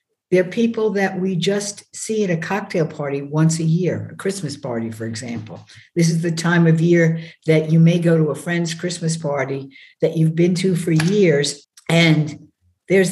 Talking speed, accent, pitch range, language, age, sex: 190 wpm, American, 150-185 Hz, English, 60-79, female